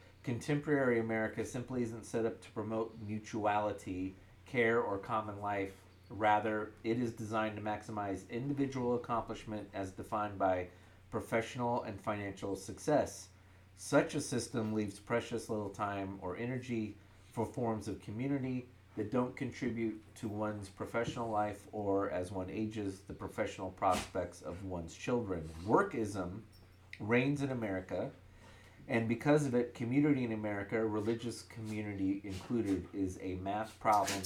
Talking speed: 135 wpm